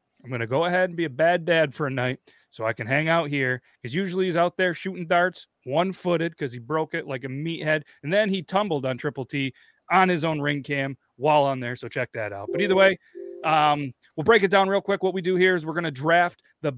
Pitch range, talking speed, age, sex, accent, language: 140-180 Hz, 260 wpm, 30-49, male, American, English